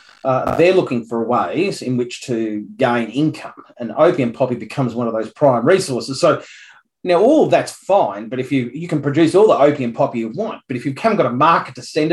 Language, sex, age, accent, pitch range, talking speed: English, male, 30-49, Australian, 120-155 Hz, 225 wpm